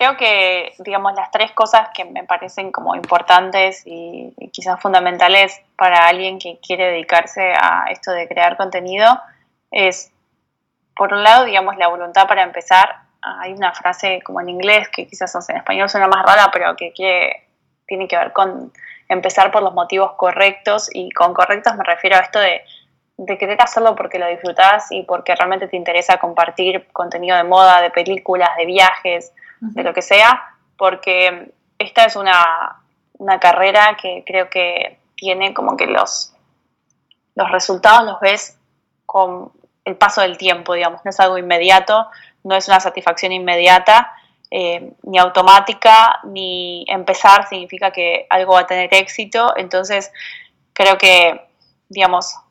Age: 10-29